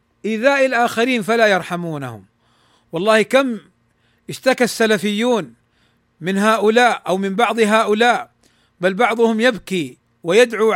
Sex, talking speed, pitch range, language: male, 100 wpm, 150-230 Hz, Arabic